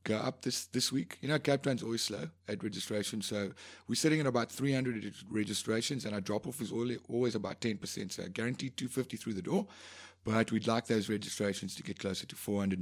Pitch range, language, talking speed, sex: 95-125 Hz, English, 200 wpm, male